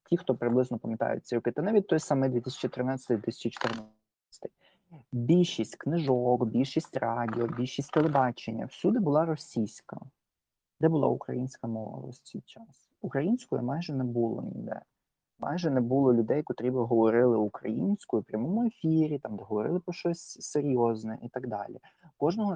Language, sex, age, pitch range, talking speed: Ukrainian, male, 20-39, 115-150 Hz, 135 wpm